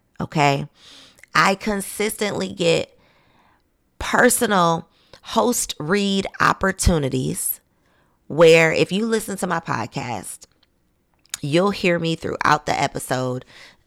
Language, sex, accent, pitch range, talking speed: English, female, American, 135-185 Hz, 90 wpm